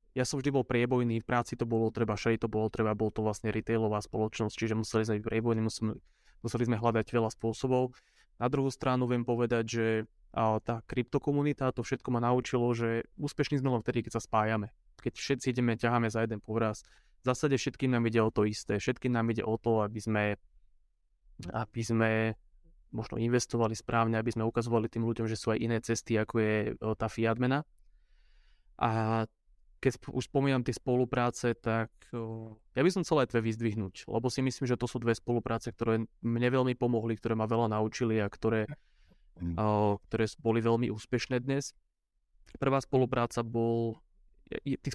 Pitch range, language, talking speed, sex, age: 110-125 Hz, Slovak, 175 wpm, male, 20-39